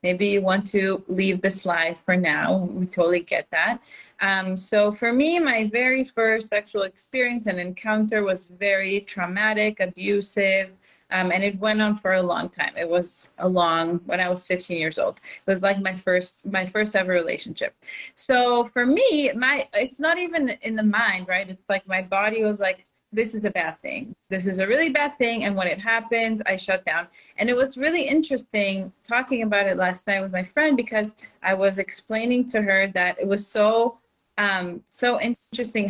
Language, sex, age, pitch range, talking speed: English, female, 30-49, 190-235 Hz, 195 wpm